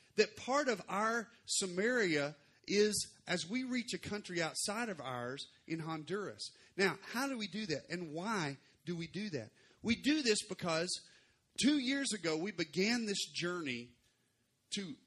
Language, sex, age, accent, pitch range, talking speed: English, male, 40-59, American, 140-205 Hz, 160 wpm